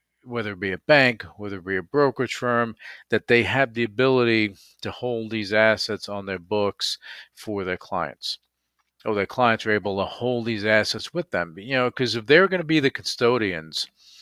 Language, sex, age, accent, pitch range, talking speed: English, male, 40-59, American, 95-120 Hz, 200 wpm